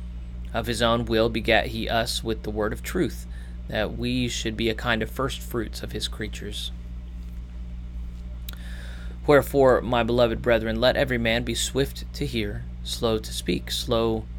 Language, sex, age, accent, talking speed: English, male, 30-49, American, 165 wpm